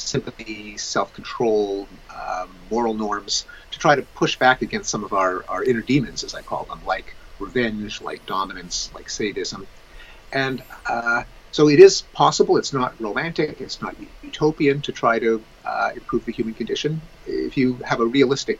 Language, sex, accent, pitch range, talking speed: English, male, American, 115-175 Hz, 165 wpm